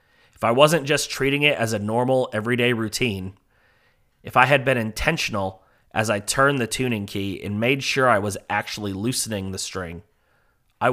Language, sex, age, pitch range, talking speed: English, male, 30-49, 100-125 Hz, 175 wpm